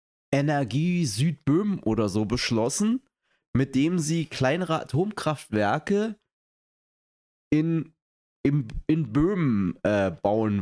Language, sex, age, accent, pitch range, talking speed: German, male, 30-49, German, 110-180 Hz, 90 wpm